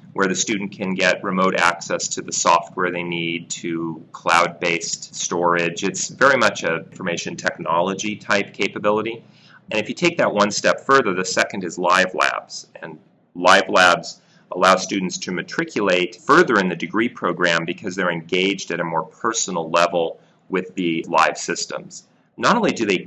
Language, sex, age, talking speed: English, male, 30-49, 170 wpm